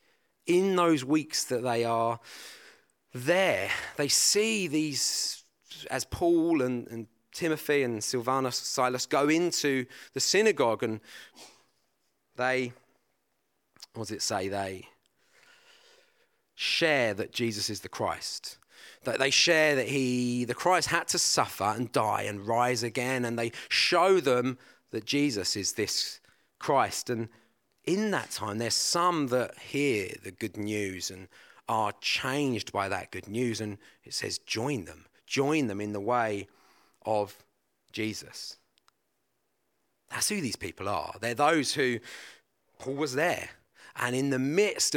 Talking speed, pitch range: 135 wpm, 115-155 Hz